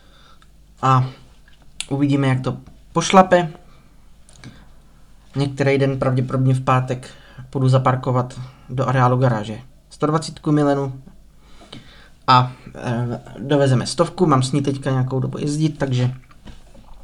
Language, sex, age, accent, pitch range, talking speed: Czech, male, 20-39, native, 130-140 Hz, 100 wpm